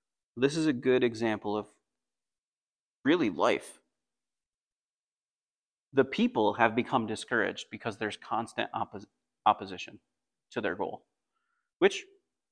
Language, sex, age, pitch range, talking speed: English, male, 30-49, 120-155 Hz, 100 wpm